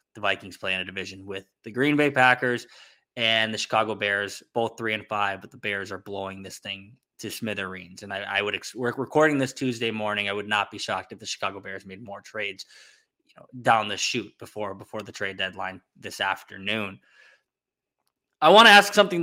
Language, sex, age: English, male, 20-39